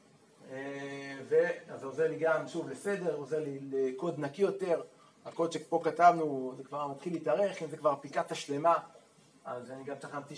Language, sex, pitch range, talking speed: Hebrew, male, 140-175 Hz, 170 wpm